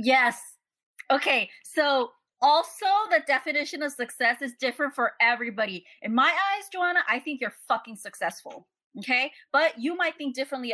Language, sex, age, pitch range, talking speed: English, female, 20-39, 215-275 Hz, 150 wpm